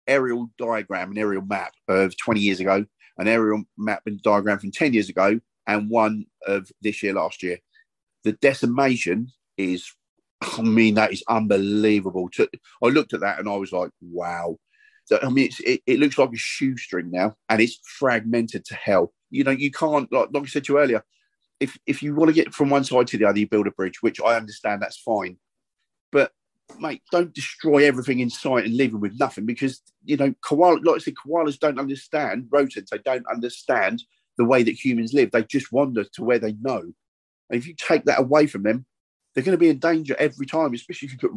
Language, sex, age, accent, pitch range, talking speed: English, male, 40-59, British, 105-150 Hz, 215 wpm